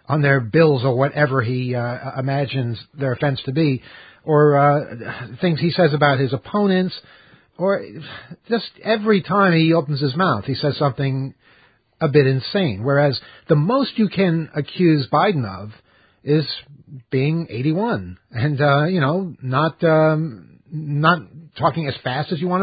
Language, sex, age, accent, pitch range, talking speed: English, male, 50-69, American, 135-175 Hz, 155 wpm